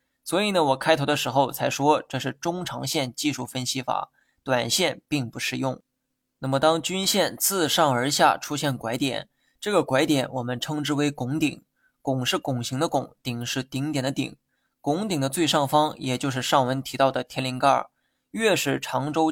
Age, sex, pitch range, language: 20-39, male, 130-160 Hz, Chinese